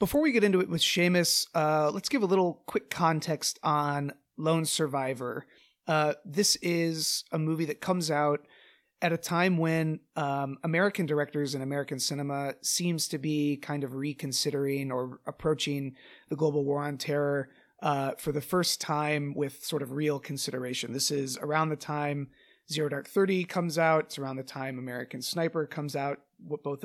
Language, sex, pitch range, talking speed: English, male, 140-160 Hz, 170 wpm